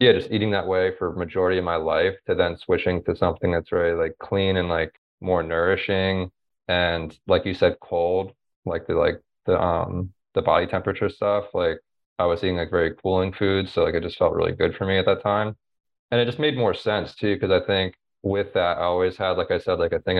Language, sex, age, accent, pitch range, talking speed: English, male, 20-39, American, 90-120 Hz, 230 wpm